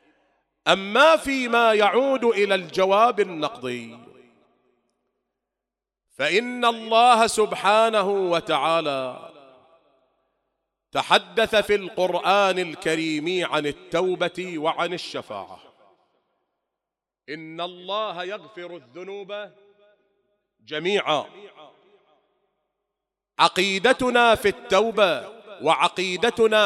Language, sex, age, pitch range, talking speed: English, male, 40-59, 175-220 Hz, 60 wpm